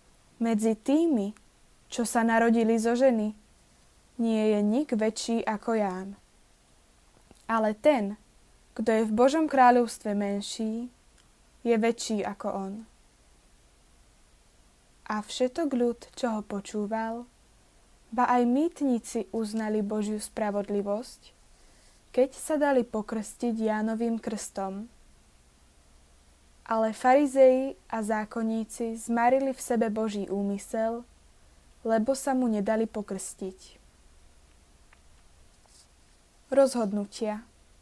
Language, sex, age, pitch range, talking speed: Slovak, female, 20-39, 205-245 Hz, 90 wpm